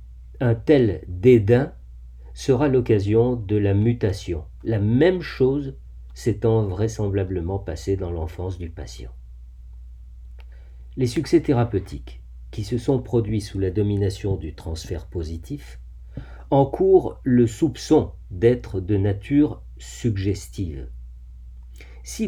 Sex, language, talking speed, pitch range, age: male, French, 105 wpm, 85-125 Hz, 50-69